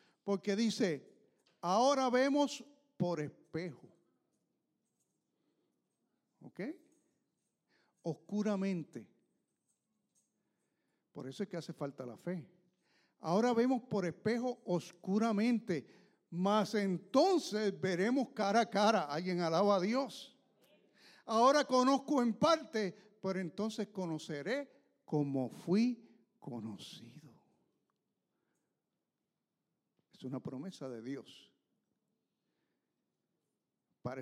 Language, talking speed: English, 80 wpm